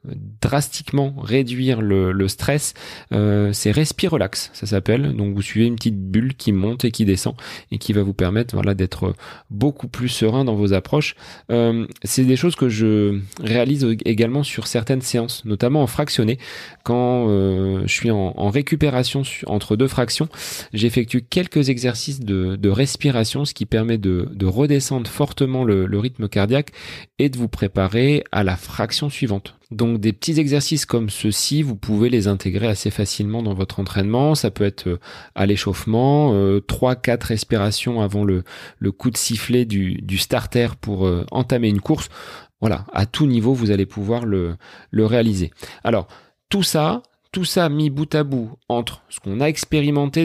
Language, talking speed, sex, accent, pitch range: French, 170 wpm, male, French, 100-135 Hz